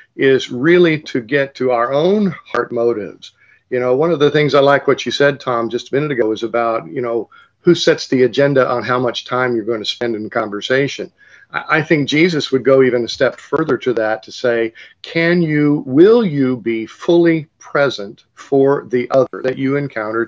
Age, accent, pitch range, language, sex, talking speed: 50-69, American, 120-155 Hz, English, male, 205 wpm